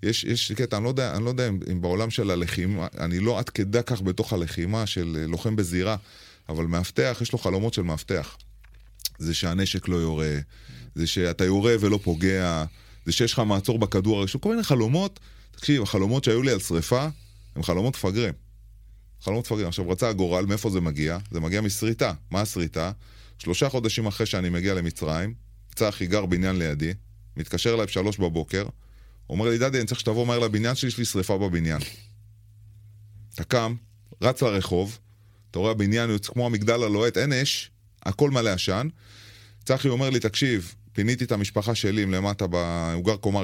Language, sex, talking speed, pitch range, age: Hebrew, male, 175 wpm, 95-115 Hz, 30-49